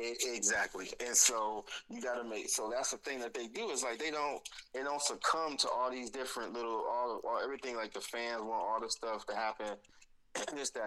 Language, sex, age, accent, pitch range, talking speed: English, male, 20-39, American, 100-145 Hz, 220 wpm